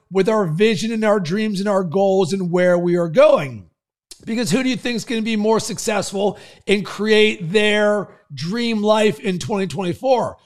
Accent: American